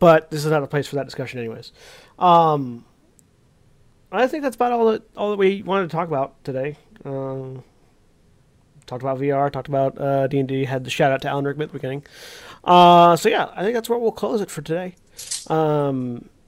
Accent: American